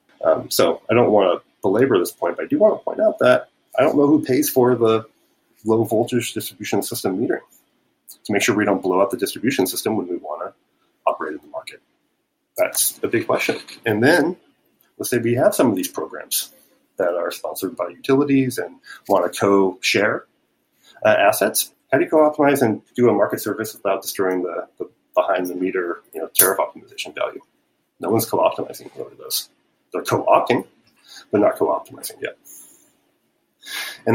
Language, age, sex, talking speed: English, 30-49, male, 175 wpm